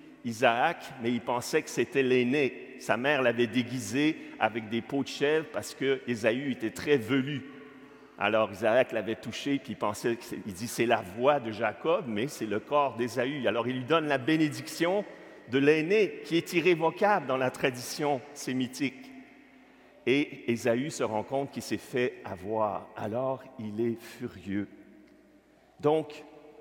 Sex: male